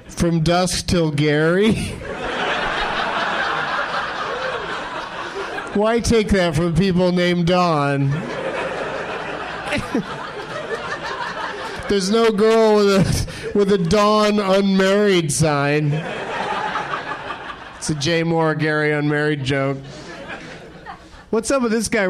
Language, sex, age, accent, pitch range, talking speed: English, male, 30-49, American, 145-185 Hz, 90 wpm